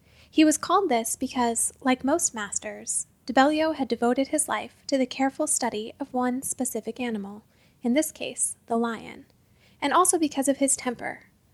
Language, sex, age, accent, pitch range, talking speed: English, female, 10-29, American, 235-280 Hz, 160 wpm